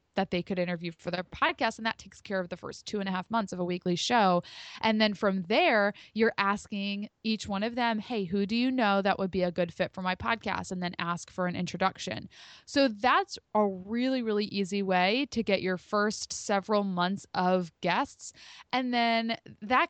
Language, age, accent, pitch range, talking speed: English, 20-39, American, 190-240 Hz, 215 wpm